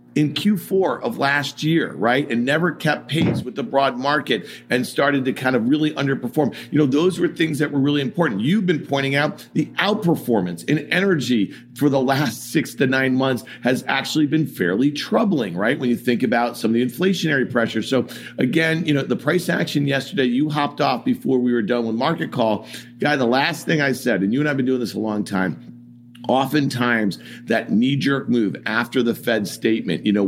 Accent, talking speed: American, 210 wpm